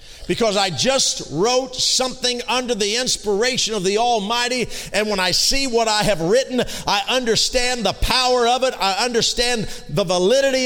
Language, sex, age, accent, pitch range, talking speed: English, male, 50-69, American, 170-250 Hz, 165 wpm